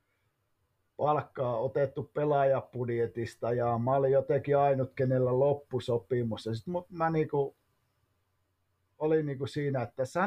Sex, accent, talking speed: male, native, 110 wpm